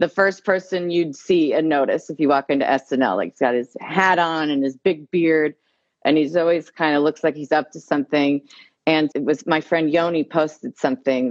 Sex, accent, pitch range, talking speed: female, American, 145-170 Hz, 220 wpm